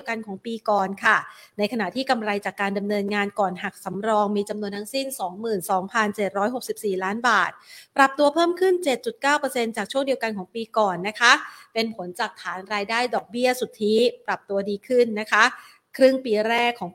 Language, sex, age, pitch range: Thai, female, 30-49, 200-240 Hz